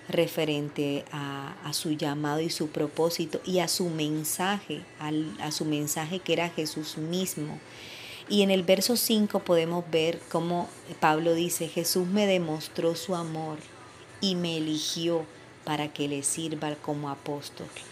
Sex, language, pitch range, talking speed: female, Spanish, 155-175 Hz, 145 wpm